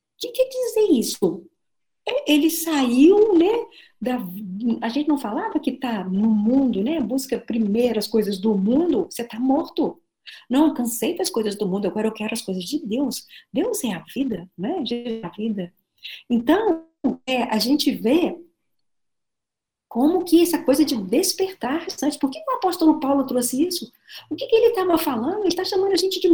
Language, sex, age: Portuguese, female, 50-69